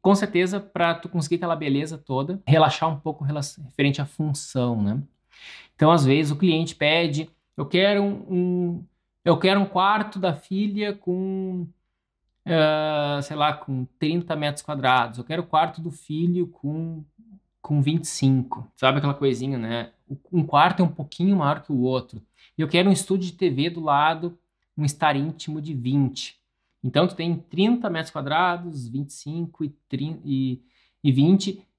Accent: Brazilian